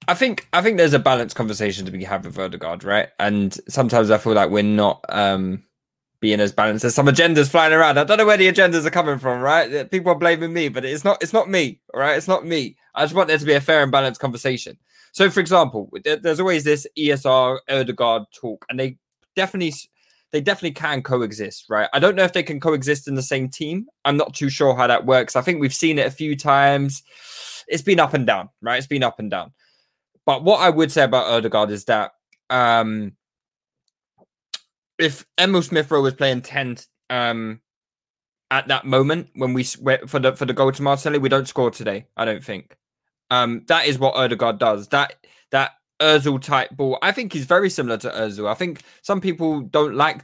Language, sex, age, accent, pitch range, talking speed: English, male, 20-39, British, 130-160 Hz, 215 wpm